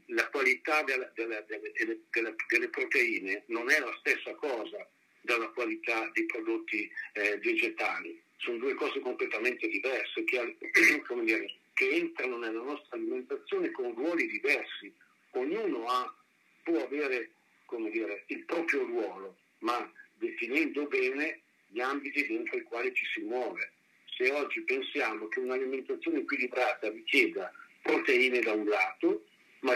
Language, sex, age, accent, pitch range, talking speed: Italian, male, 50-69, native, 340-395 Hz, 125 wpm